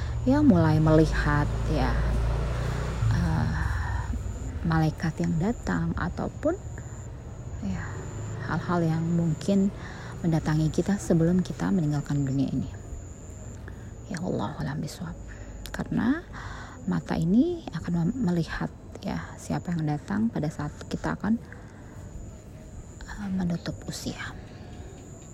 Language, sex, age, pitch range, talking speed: Indonesian, female, 20-39, 105-175 Hz, 90 wpm